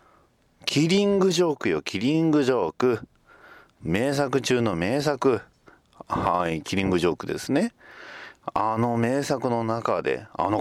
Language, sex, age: Japanese, male, 40-59